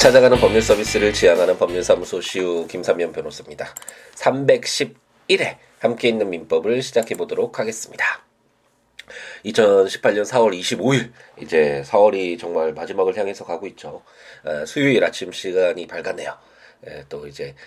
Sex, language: male, Korean